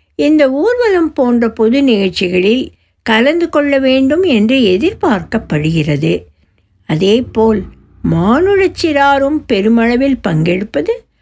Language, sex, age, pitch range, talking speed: Tamil, female, 60-79, 185-290 Hz, 70 wpm